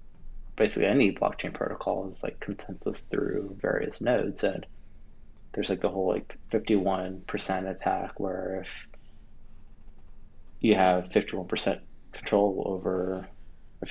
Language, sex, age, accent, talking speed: English, male, 20-39, American, 110 wpm